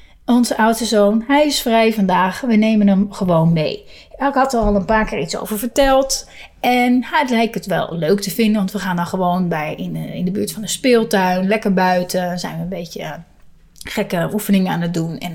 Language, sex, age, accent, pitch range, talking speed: Dutch, female, 30-49, Dutch, 185-240 Hz, 215 wpm